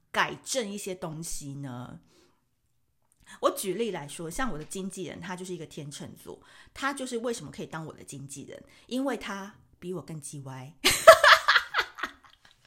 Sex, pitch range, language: female, 165-255 Hz, Chinese